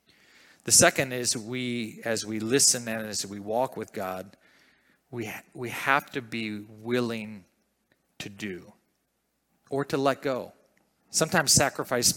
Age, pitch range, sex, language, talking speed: 40-59, 110-125 Hz, male, English, 135 wpm